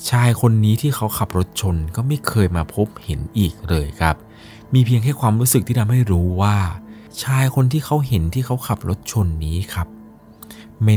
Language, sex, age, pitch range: Thai, male, 20-39, 85-110 Hz